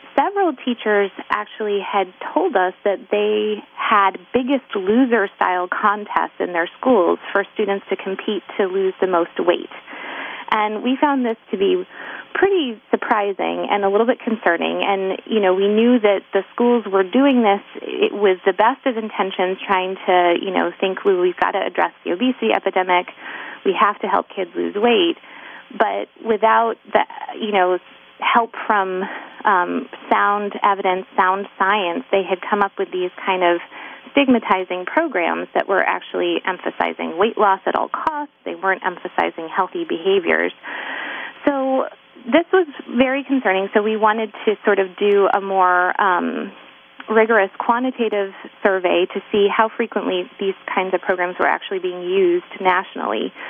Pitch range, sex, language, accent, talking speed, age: 195-255 Hz, female, English, American, 160 wpm, 30-49